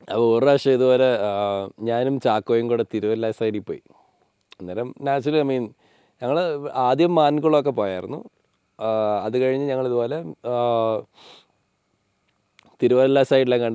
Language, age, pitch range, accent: Malayalam, 20-39, 115-140 Hz, native